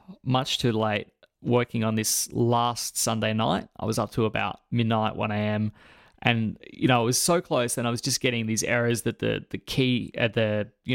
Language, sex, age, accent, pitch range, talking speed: English, male, 20-39, Australian, 110-125 Hz, 205 wpm